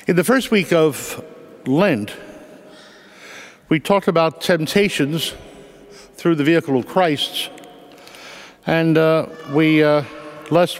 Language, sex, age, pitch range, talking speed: English, male, 60-79, 145-175 Hz, 110 wpm